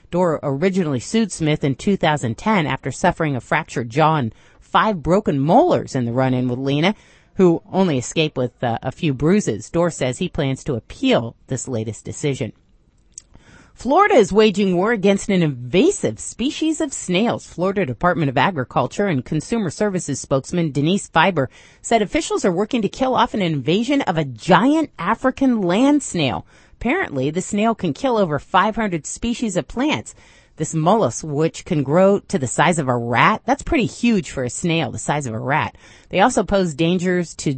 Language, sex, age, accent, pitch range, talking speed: English, female, 40-59, American, 135-205 Hz, 175 wpm